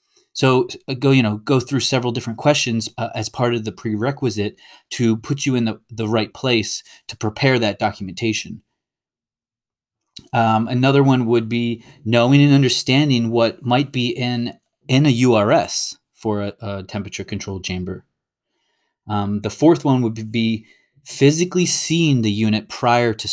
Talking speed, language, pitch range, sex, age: 155 wpm, English, 105-125 Hz, male, 30-49